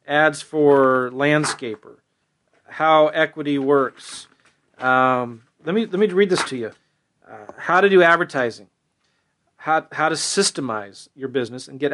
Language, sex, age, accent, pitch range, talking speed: English, male, 40-59, American, 135-160 Hz, 140 wpm